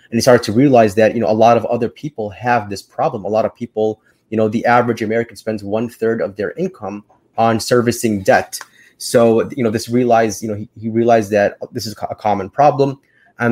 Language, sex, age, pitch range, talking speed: English, male, 20-39, 110-125 Hz, 225 wpm